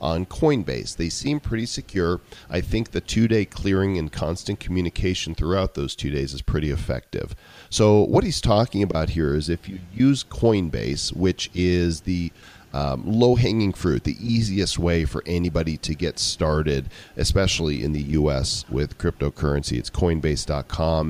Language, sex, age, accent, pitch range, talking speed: English, male, 40-59, American, 80-110 Hz, 155 wpm